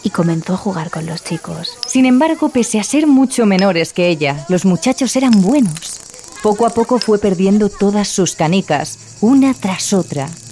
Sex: female